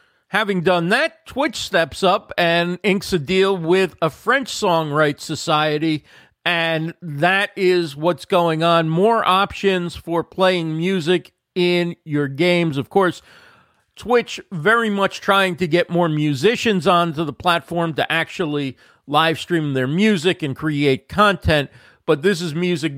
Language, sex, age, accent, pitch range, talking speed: English, male, 50-69, American, 155-205 Hz, 145 wpm